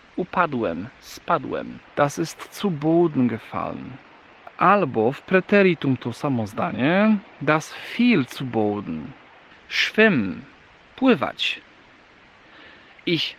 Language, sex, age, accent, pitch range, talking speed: Polish, male, 40-59, native, 115-170 Hz, 90 wpm